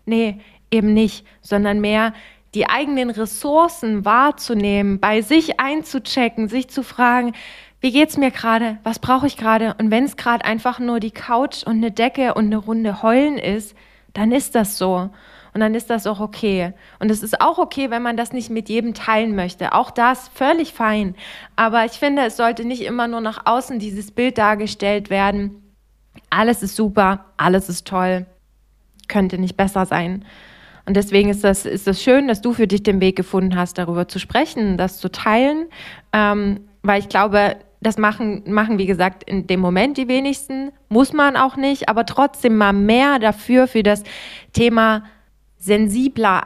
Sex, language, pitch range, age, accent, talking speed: female, German, 200-245 Hz, 20-39, German, 180 wpm